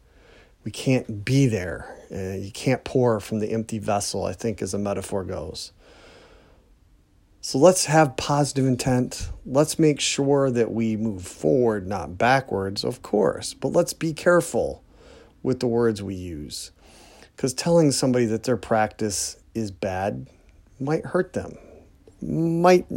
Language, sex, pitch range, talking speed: English, male, 105-140 Hz, 145 wpm